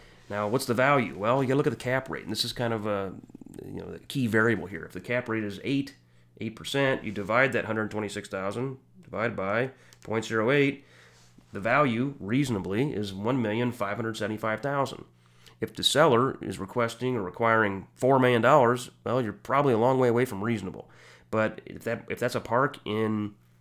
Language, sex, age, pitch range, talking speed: English, male, 30-49, 100-125 Hz, 210 wpm